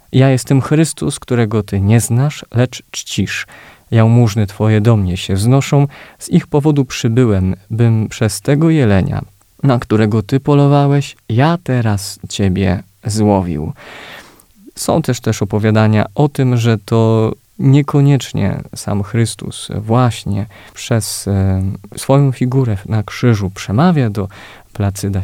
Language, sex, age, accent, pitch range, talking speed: Polish, male, 20-39, native, 105-140 Hz, 125 wpm